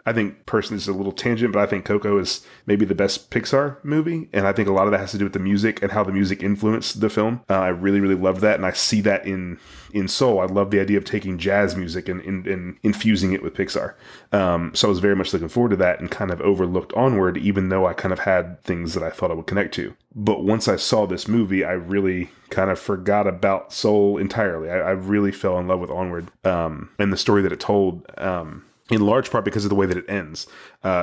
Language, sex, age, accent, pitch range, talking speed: English, male, 30-49, American, 95-105 Hz, 260 wpm